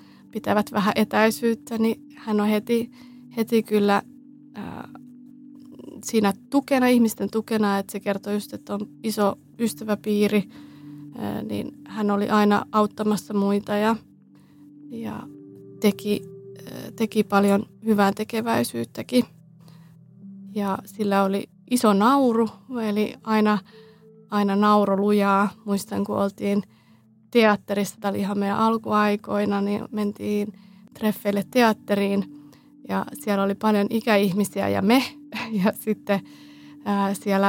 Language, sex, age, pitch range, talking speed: Finnish, female, 30-49, 200-225 Hz, 110 wpm